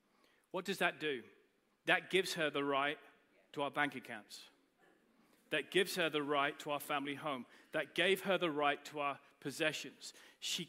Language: English